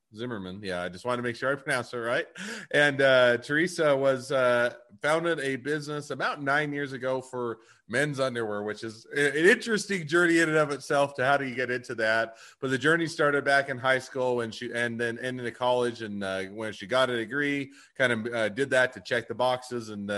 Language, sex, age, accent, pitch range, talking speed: English, male, 30-49, American, 110-125 Hz, 225 wpm